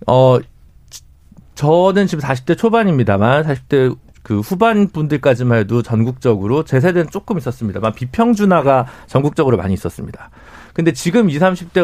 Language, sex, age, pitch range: Korean, male, 40-59, 115-195 Hz